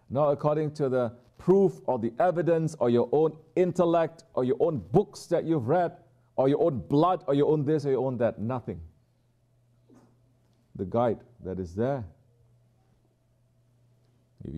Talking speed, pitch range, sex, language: 155 wpm, 105-130 Hz, male, English